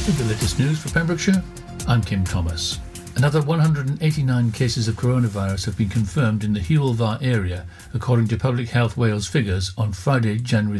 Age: 60-79